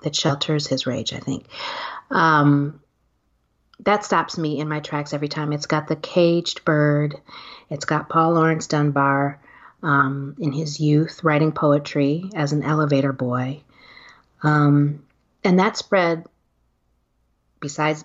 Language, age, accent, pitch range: English, 30-49, American, 145-175 Hz